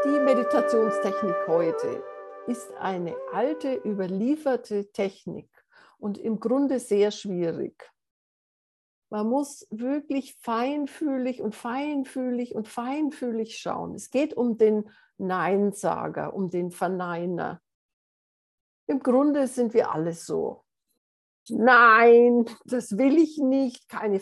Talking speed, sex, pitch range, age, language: 105 wpm, female, 190-265 Hz, 60-79, German